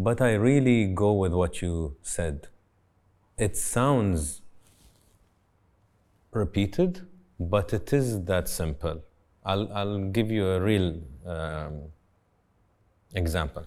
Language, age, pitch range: English, 30-49, 85-105 Hz